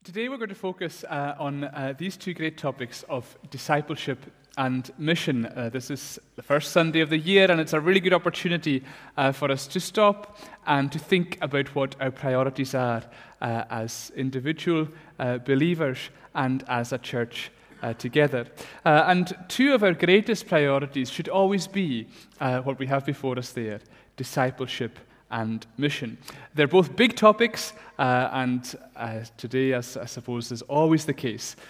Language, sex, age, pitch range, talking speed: English, male, 30-49, 125-165 Hz, 170 wpm